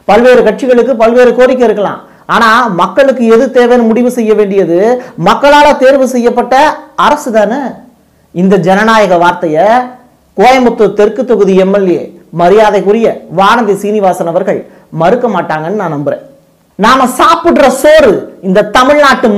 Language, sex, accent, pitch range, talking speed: Tamil, male, native, 205-260 Hz, 110 wpm